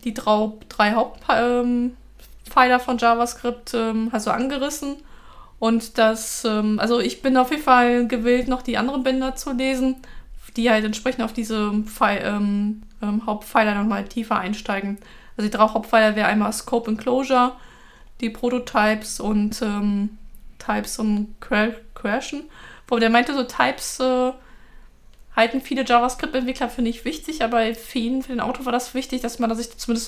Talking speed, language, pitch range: 160 wpm, German, 215-250 Hz